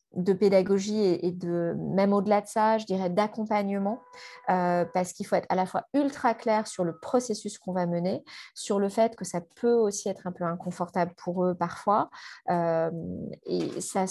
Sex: female